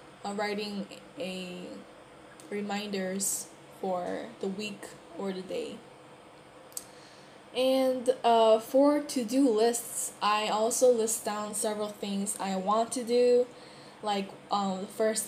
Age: 10-29